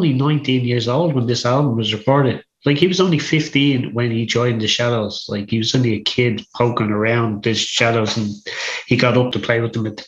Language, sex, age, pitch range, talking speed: English, male, 30-49, 115-130 Hz, 230 wpm